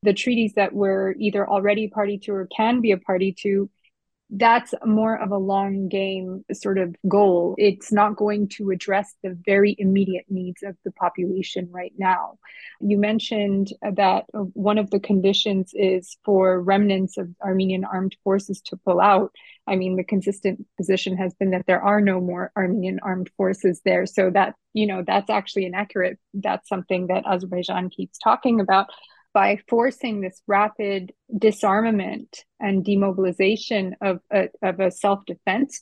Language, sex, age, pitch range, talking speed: English, female, 20-39, 190-210 Hz, 160 wpm